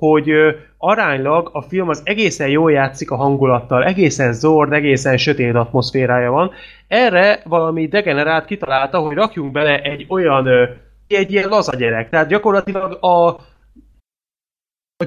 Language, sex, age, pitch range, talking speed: Hungarian, male, 20-39, 135-175 Hz, 125 wpm